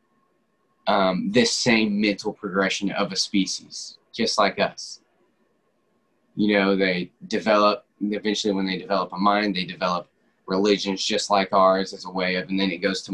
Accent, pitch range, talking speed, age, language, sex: American, 95-105 Hz, 165 wpm, 20-39, English, male